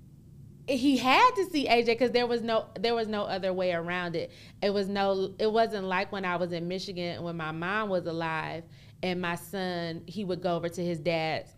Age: 30-49